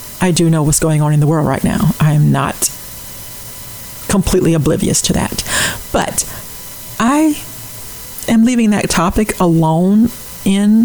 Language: English